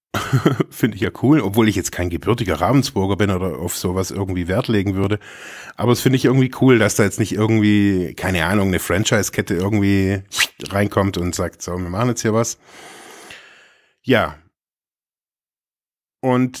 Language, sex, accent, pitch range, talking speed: German, male, German, 95-120 Hz, 165 wpm